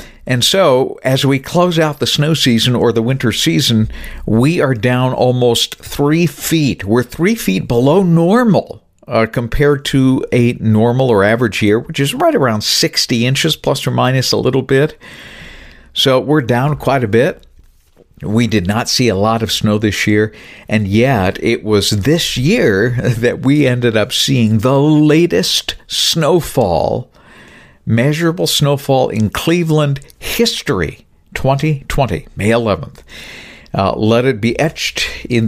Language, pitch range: English, 105-140 Hz